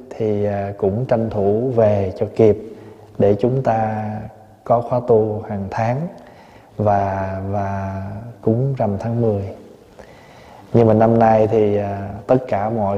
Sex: male